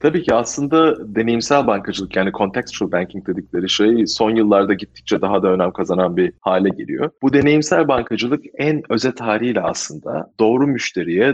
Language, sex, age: Turkish, male, 30-49